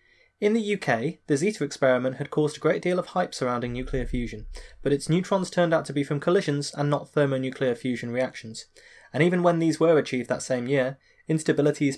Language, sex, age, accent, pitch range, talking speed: English, male, 20-39, British, 130-180 Hz, 200 wpm